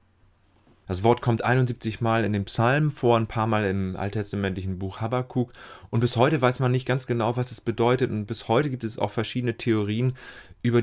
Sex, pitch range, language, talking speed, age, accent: male, 95-120 Hz, German, 200 wpm, 30-49, German